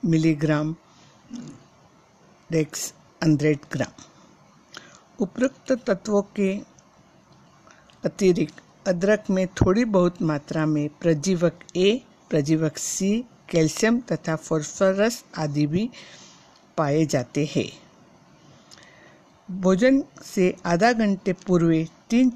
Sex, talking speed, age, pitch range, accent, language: female, 90 wpm, 60-79, 160-200 Hz, native, Hindi